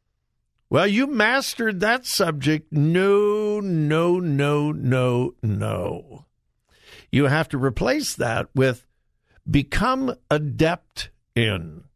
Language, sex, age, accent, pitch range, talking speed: English, male, 60-79, American, 110-175 Hz, 95 wpm